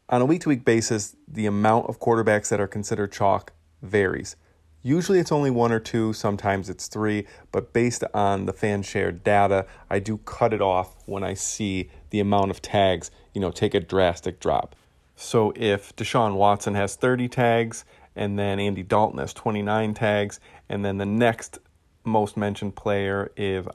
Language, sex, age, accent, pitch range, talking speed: English, male, 30-49, American, 95-110 Hz, 170 wpm